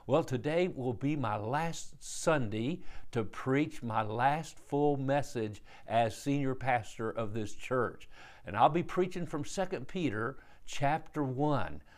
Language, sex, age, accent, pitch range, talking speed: English, male, 50-69, American, 115-145 Hz, 140 wpm